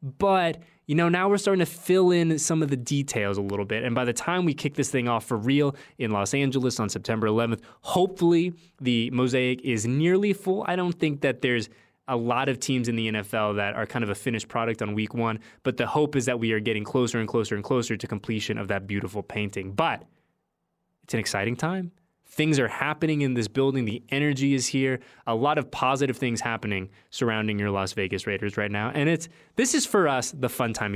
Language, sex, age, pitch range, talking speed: English, male, 20-39, 115-150 Hz, 225 wpm